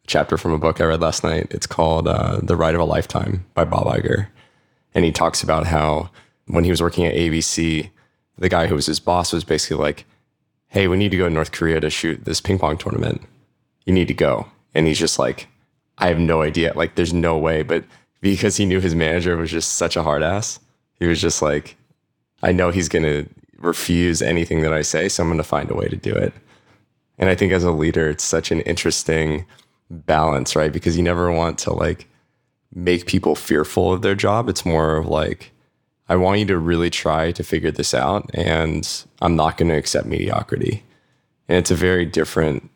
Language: English